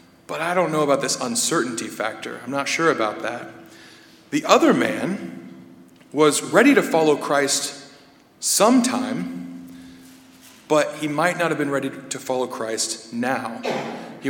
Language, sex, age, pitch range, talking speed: English, male, 40-59, 115-150 Hz, 145 wpm